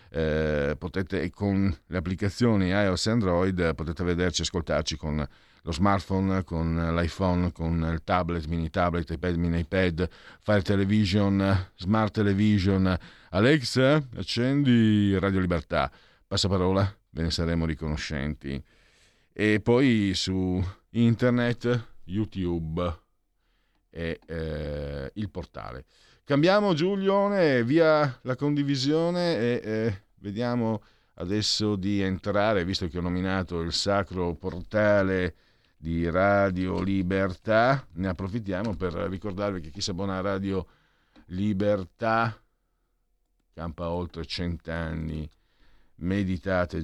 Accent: native